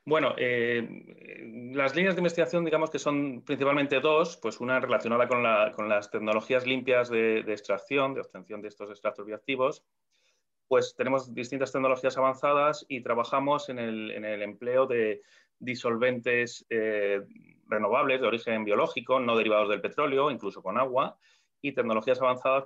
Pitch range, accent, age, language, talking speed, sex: 110-140 Hz, Spanish, 30-49, Spanish, 150 wpm, male